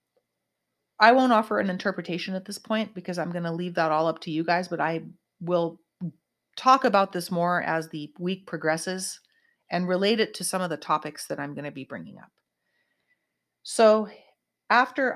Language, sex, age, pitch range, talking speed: English, female, 30-49, 155-190 Hz, 185 wpm